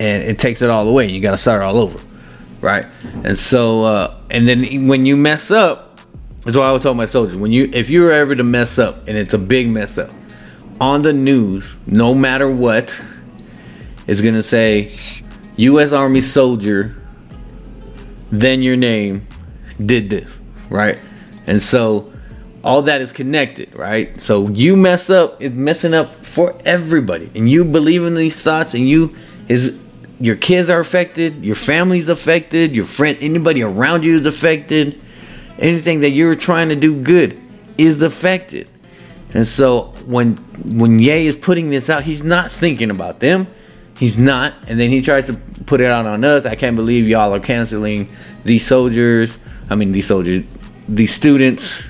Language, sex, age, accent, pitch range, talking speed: English, male, 30-49, American, 110-155 Hz, 175 wpm